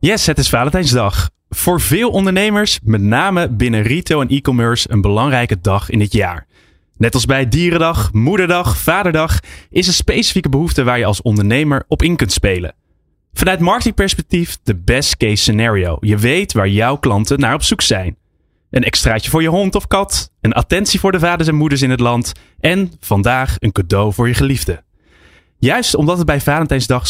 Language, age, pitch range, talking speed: Dutch, 20-39, 100-150 Hz, 180 wpm